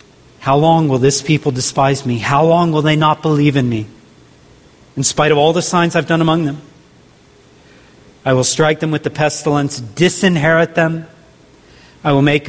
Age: 40-59